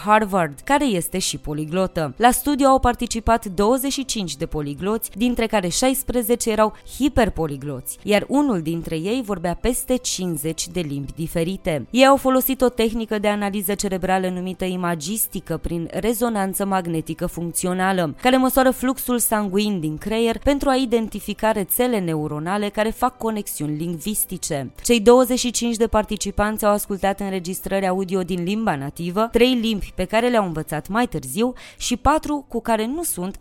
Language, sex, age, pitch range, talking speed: Romanian, female, 20-39, 170-240 Hz, 145 wpm